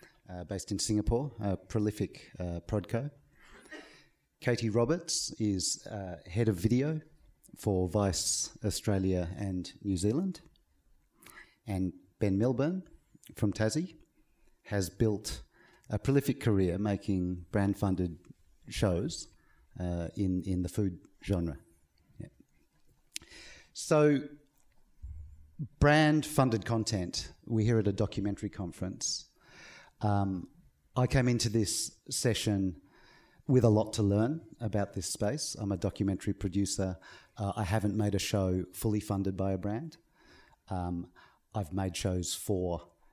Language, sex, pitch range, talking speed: English, male, 95-120 Hz, 120 wpm